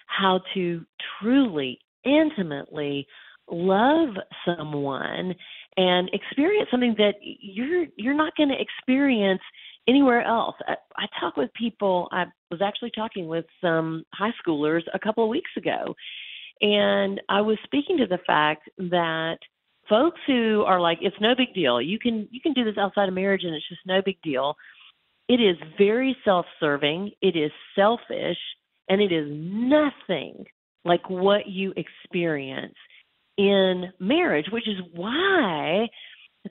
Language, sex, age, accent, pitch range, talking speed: English, female, 40-59, American, 175-245 Hz, 145 wpm